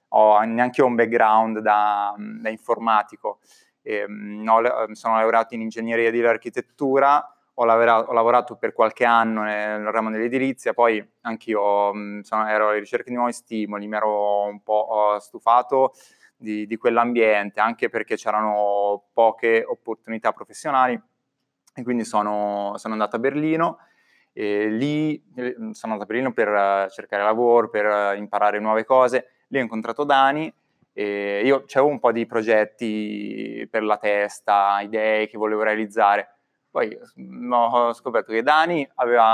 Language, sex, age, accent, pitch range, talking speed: Italian, male, 20-39, native, 105-120 Hz, 140 wpm